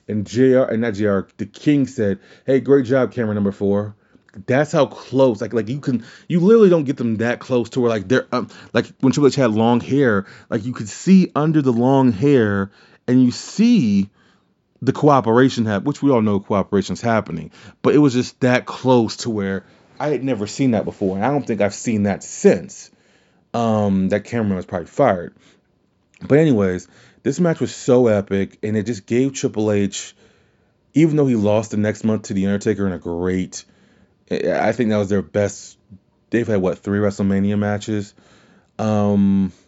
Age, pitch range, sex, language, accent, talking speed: 30-49, 100-125 Hz, male, English, American, 190 wpm